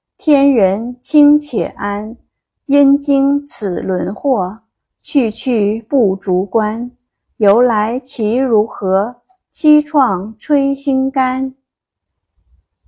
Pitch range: 200-275 Hz